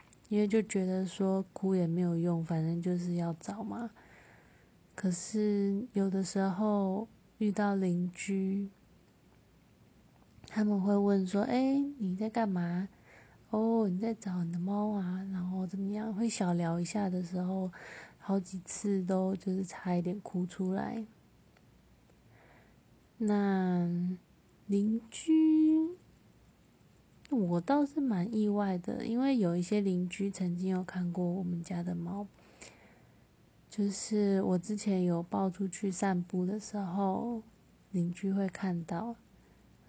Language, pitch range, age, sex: Chinese, 175-205 Hz, 20-39, female